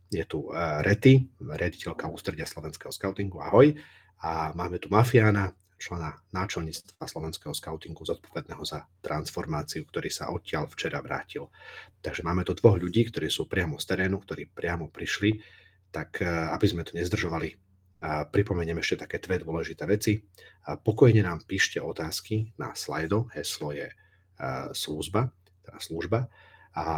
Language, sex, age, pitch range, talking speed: Slovak, male, 40-59, 80-100 Hz, 135 wpm